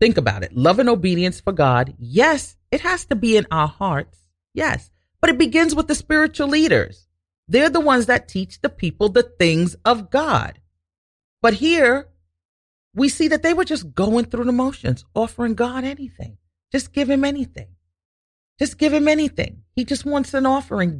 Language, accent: English, American